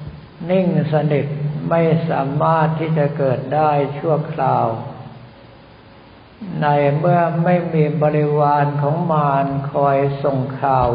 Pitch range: 135-155 Hz